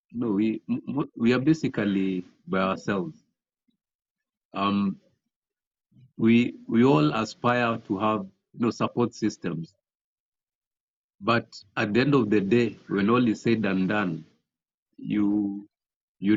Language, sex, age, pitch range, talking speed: English, male, 50-69, 100-120 Hz, 125 wpm